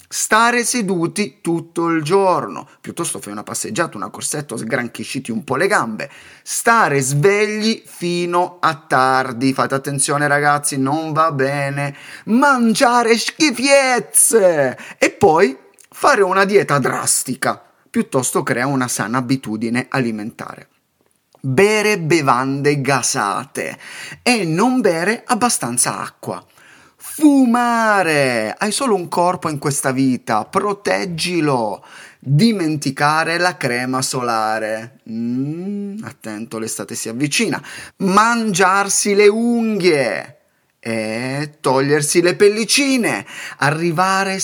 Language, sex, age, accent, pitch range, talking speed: Italian, male, 30-49, native, 135-205 Hz, 100 wpm